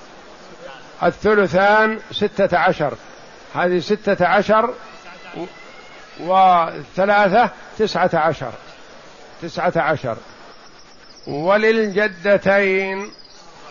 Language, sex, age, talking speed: Arabic, male, 50-69, 55 wpm